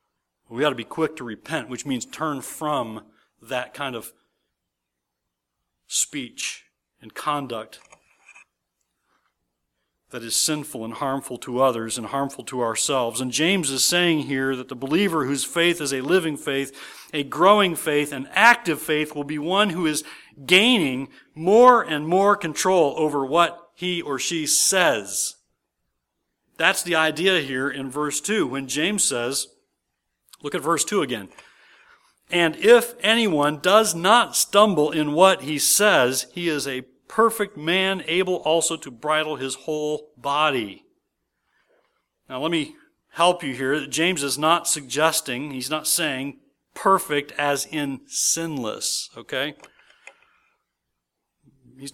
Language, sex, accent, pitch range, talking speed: English, male, American, 135-175 Hz, 140 wpm